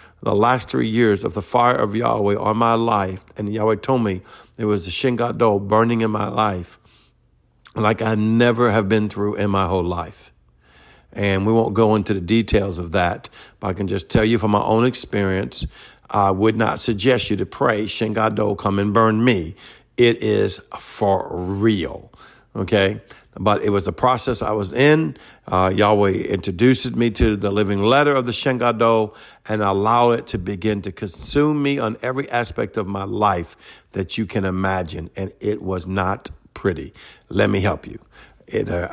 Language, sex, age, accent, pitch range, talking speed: English, male, 50-69, American, 100-115 Hz, 180 wpm